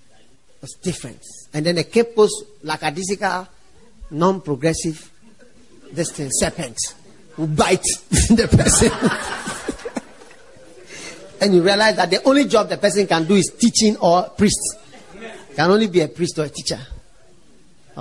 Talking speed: 130 wpm